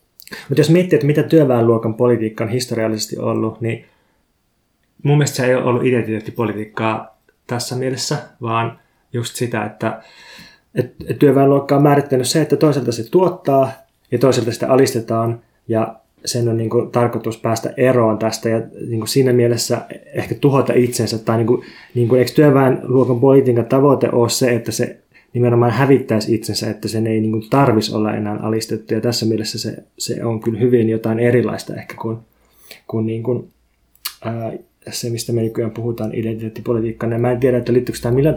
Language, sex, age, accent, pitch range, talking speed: Finnish, male, 20-39, native, 110-130 Hz, 165 wpm